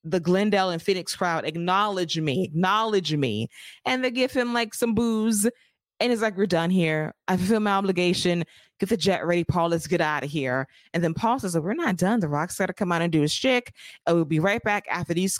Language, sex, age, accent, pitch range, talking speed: English, female, 20-39, American, 165-195 Hz, 235 wpm